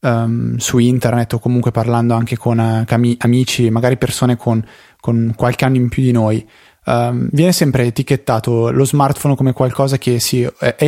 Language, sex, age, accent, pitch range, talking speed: Italian, male, 20-39, native, 110-135 Hz, 155 wpm